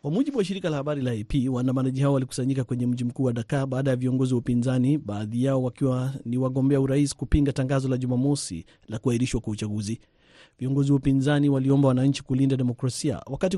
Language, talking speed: Swahili, 175 wpm